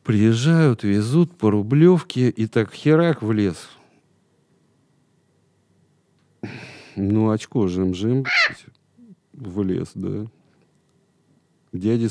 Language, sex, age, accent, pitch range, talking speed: Russian, male, 40-59, native, 95-125 Hz, 80 wpm